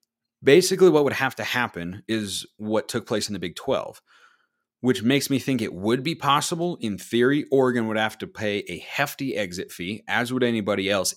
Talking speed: 200 wpm